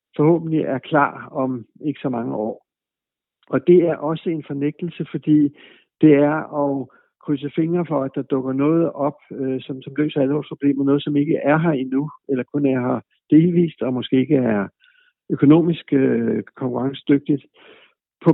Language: Danish